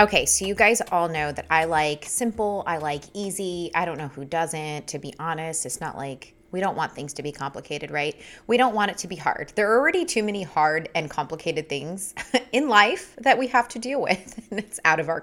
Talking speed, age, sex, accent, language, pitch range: 240 wpm, 20-39, female, American, English, 155-205 Hz